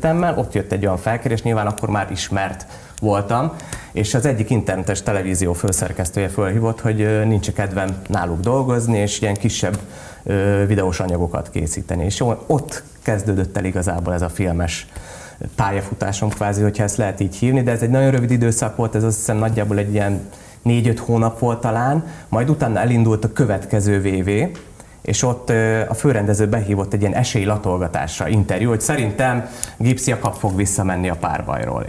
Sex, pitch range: male, 100-130 Hz